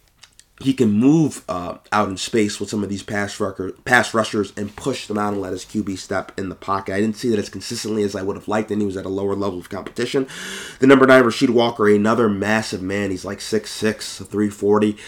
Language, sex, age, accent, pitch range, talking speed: English, male, 30-49, American, 95-110 Hz, 235 wpm